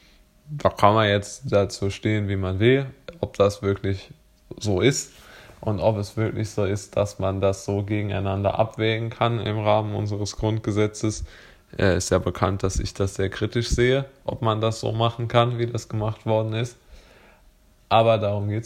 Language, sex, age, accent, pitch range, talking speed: German, male, 20-39, German, 100-115 Hz, 175 wpm